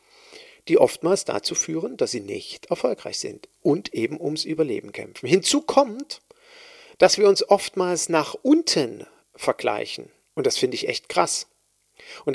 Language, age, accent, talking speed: German, 50-69, German, 145 wpm